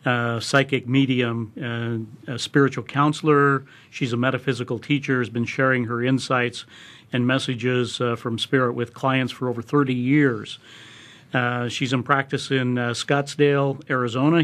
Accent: American